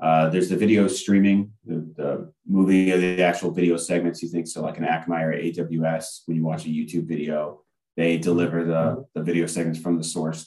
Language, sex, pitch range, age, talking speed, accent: English, male, 80-95 Hz, 30-49, 205 wpm, American